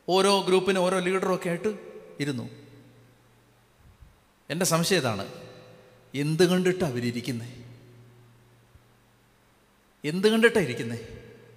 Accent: native